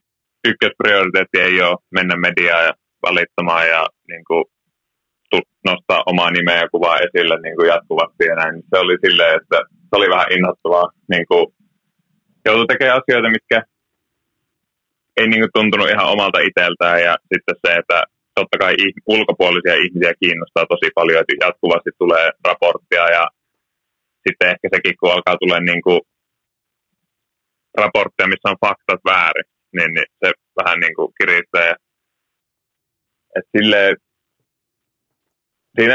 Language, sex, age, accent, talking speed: Finnish, male, 30-49, native, 125 wpm